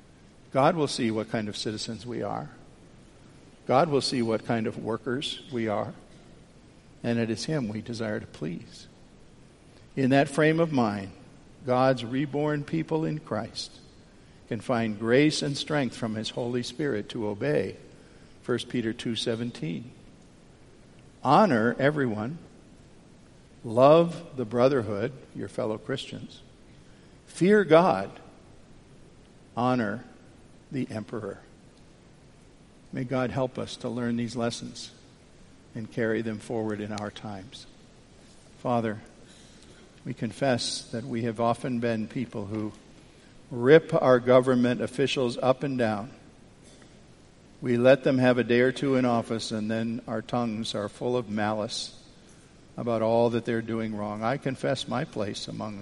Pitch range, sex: 110-130 Hz, male